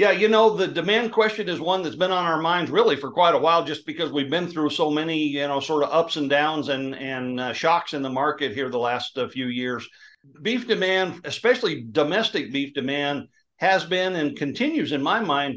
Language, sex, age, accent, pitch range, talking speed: English, male, 60-79, American, 140-180 Hz, 225 wpm